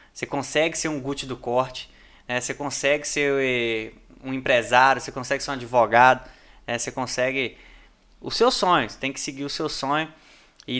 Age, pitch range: 20-39, 125-145 Hz